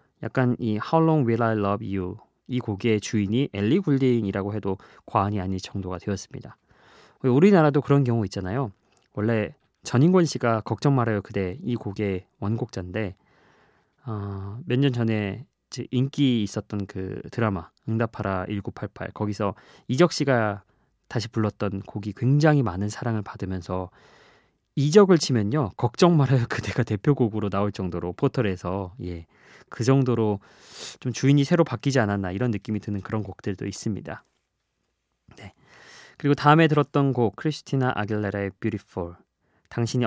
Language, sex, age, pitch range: Korean, male, 20-39, 100-130 Hz